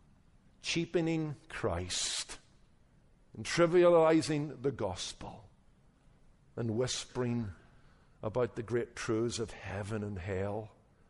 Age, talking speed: 50-69, 85 wpm